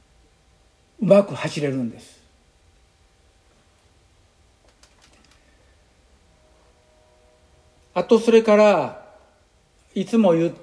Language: Japanese